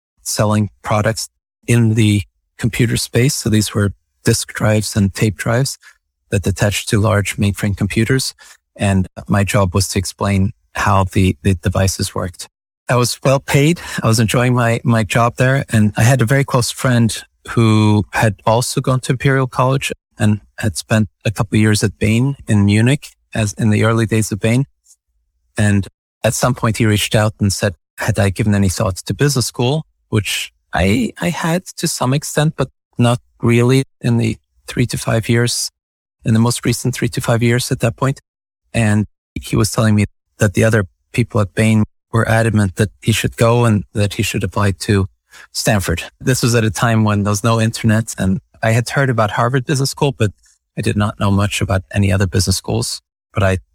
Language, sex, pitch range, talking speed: English, male, 100-120 Hz, 195 wpm